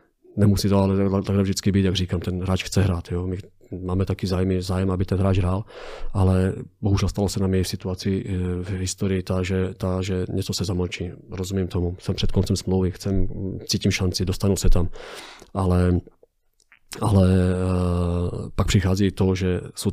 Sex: male